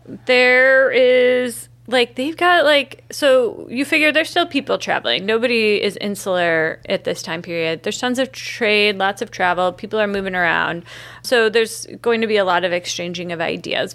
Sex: female